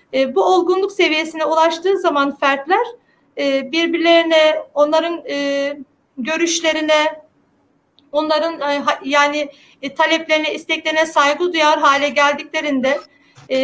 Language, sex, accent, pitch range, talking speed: Turkish, female, native, 290-350 Hz, 100 wpm